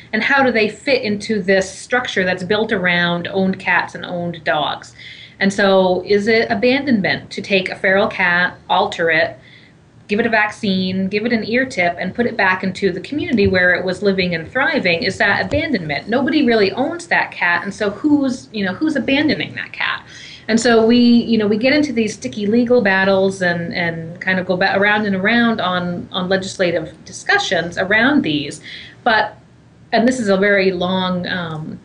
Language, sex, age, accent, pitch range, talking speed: English, female, 30-49, American, 180-235 Hz, 190 wpm